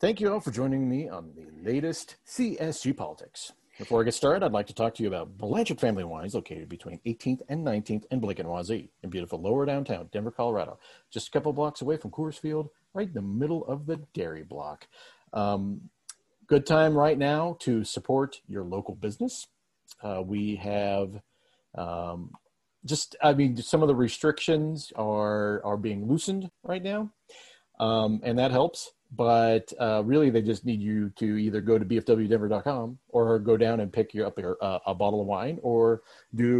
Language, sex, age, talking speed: English, male, 40-59, 180 wpm